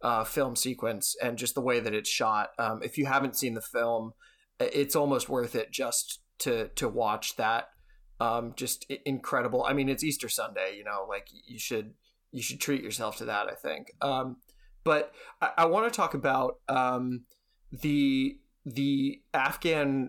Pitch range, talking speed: 125-150 Hz, 175 wpm